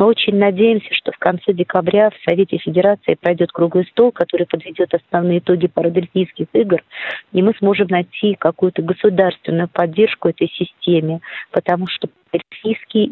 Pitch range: 180-210 Hz